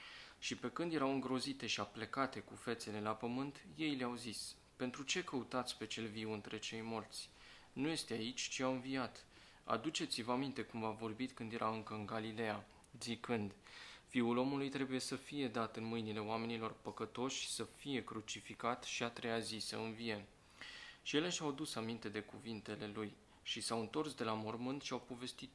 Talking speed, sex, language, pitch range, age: 180 wpm, male, Romanian, 110-130 Hz, 20-39